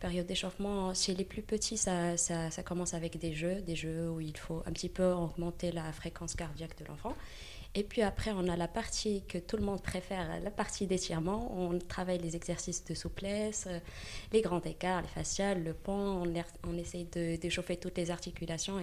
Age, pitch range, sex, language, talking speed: 20-39, 170-195 Hz, female, French, 195 wpm